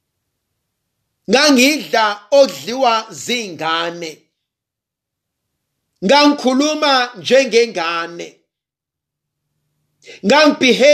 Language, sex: English, male